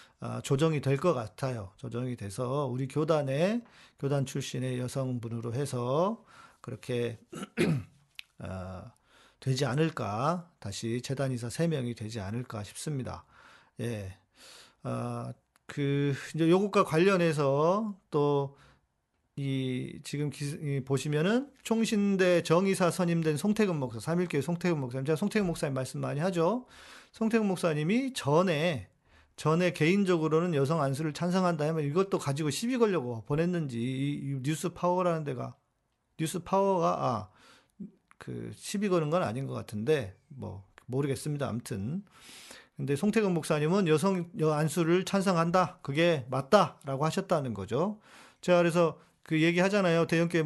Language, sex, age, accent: Korean, male, 40-59, native